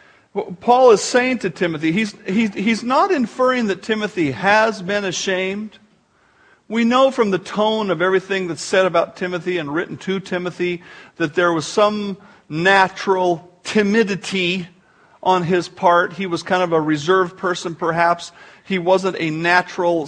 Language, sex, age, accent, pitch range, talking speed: English, male, 50-69, American, 175-225 Hz, 150 wpm